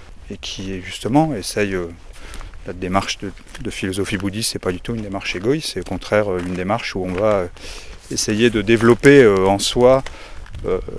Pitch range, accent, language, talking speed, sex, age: 95-115 Hz, French, French, 170 wpm, male, 30-49